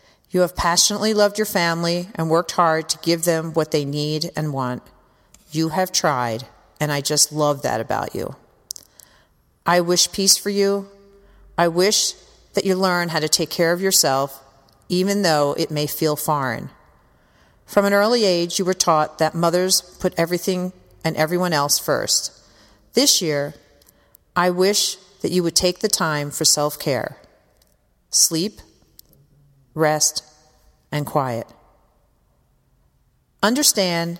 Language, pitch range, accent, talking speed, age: English, 150-185 Hz, American, 140 wpm, 40-59